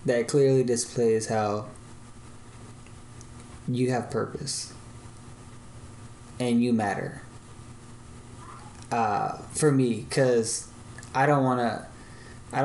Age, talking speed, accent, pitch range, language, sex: 20-39, 90 wpm, American, 120-130 Hz, English, male